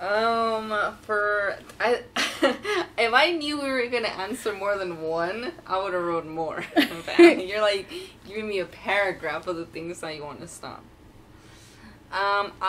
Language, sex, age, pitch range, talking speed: English, female, 20-39, 110-185 Hz, 160 wpm